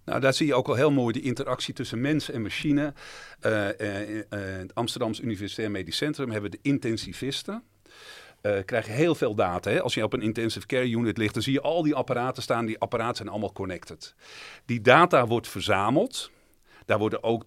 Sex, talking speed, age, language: male, 205 wpm, 50-69, Dutch